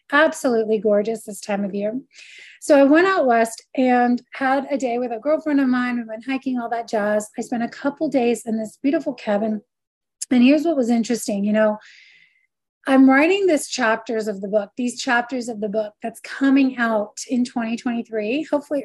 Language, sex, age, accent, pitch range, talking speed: English, female, 30-49, American, 230-280 Hz, 190 wpm